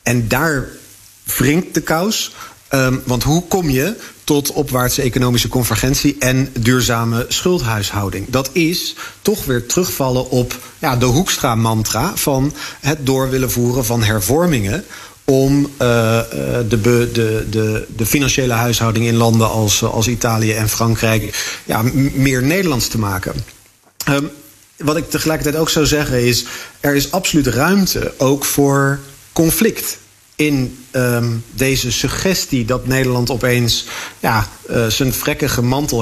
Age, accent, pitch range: 50-69, Dutch, 120-150 Hz